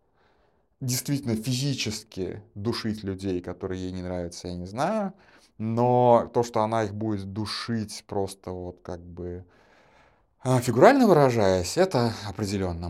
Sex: male